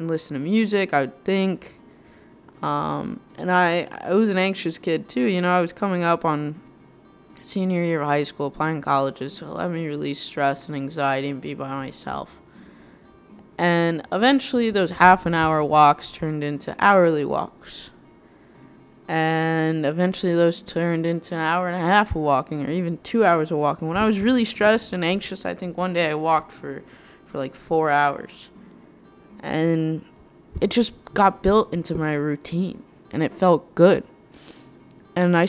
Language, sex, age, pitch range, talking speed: English, female, 20-39, 150-185 Hz, 175 wpm